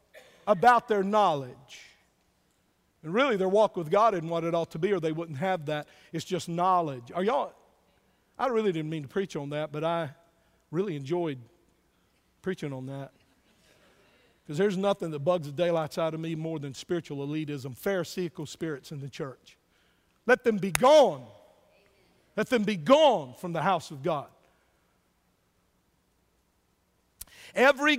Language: English